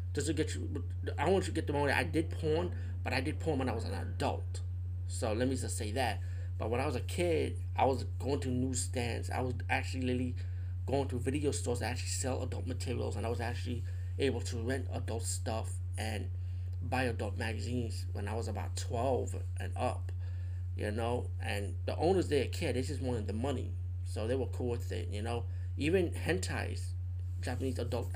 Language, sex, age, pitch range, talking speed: English, male, 30-49, 90-95 Hz, 205 wpm